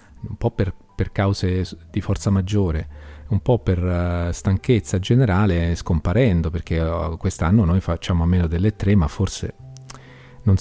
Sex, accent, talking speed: male, native, 145 wpm